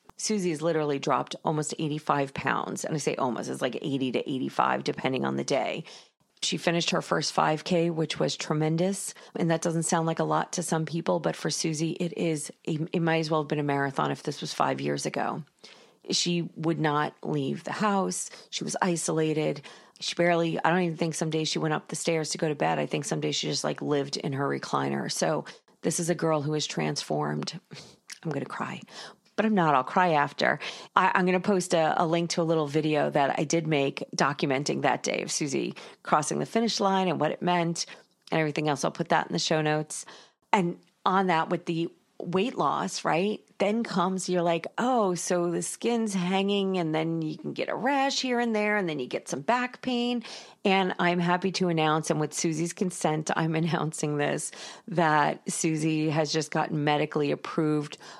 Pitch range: 155-180 Hz